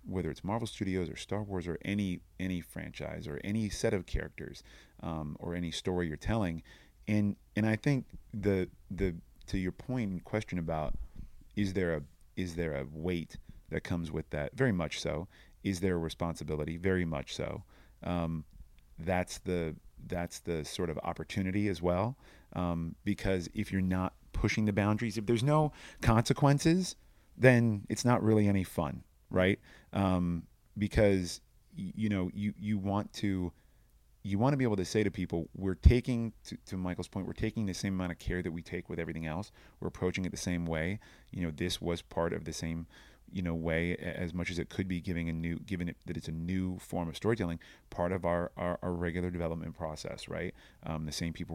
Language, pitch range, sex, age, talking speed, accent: English, 85-100 Hz, male, 30-49, 195 wpm, American